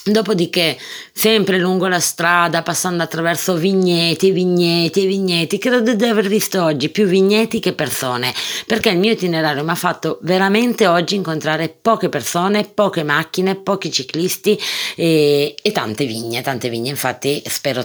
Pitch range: 135-180 Hz